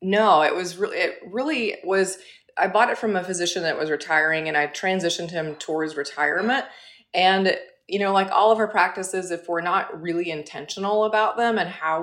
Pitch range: 160-205 Hz